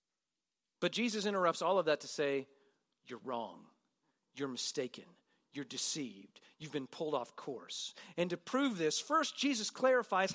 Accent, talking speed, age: American, 150 wpm, 40-59